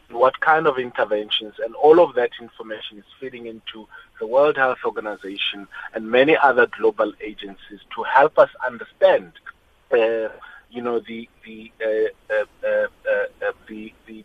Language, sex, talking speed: English, male, 150 wpm